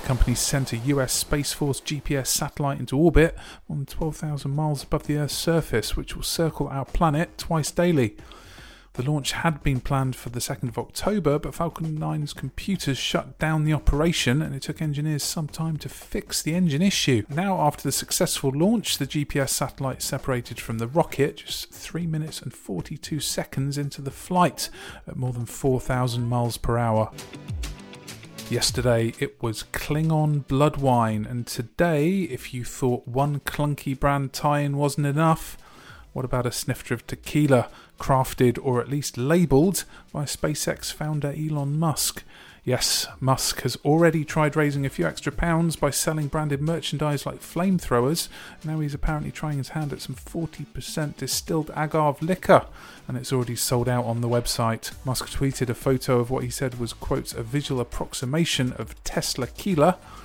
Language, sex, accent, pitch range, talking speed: English, male, British, 125-155 Hz, 165 wpm